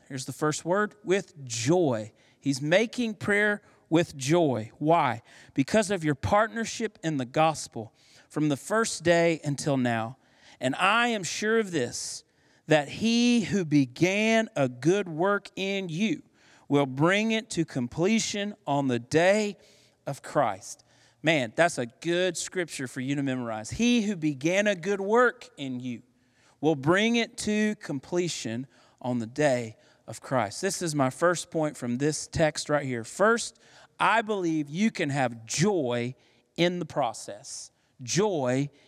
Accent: American